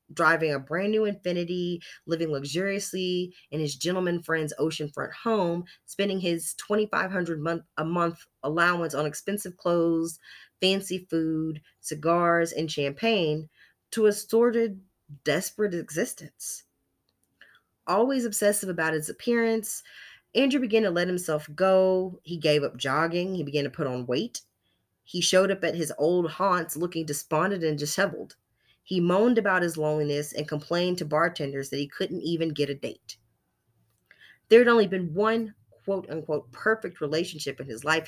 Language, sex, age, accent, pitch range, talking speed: English, female, 20-39, American, 145-185 Hz, 145 wpm